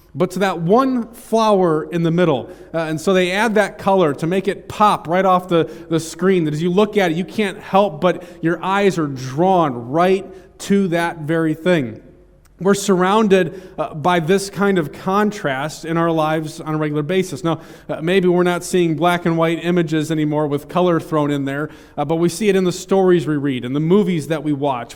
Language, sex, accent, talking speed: English, male, American, 210 wpm